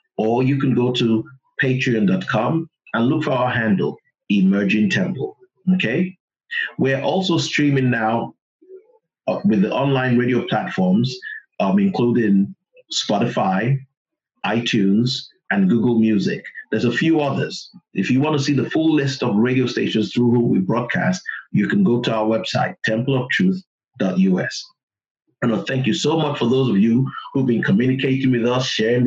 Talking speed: 150 wpm